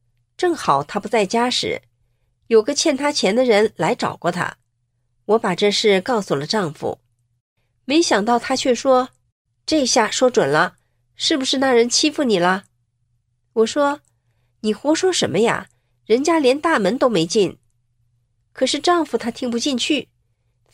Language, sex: Chinese, female